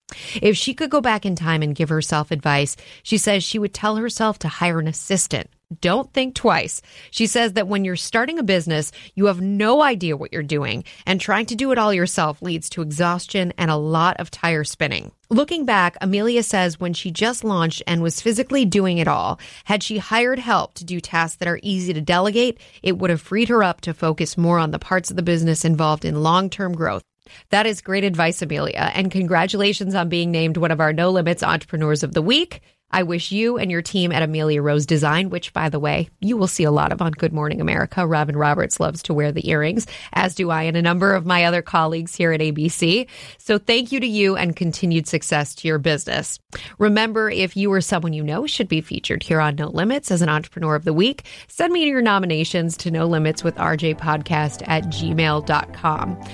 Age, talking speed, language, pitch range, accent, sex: 30-49, 220 wpm, English, 160-200 Hz, American, female